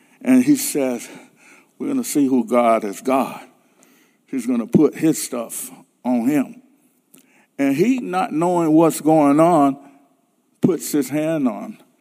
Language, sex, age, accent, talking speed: English, male, 50-69, American, 150 wpm